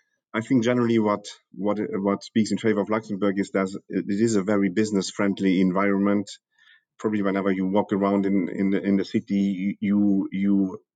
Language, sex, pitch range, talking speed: English, male, 95-110 Hz, 180 wpm